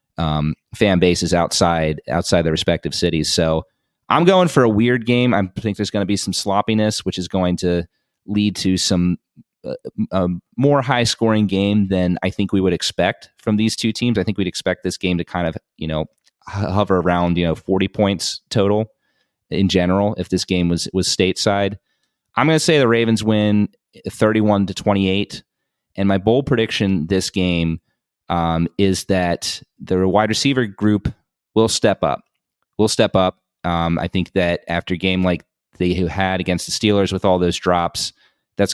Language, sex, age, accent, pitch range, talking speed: English, male, 30-49, American, 85-105 Hz, 185 wpm